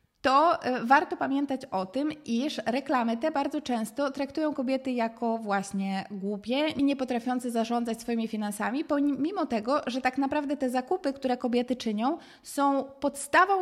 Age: 20-39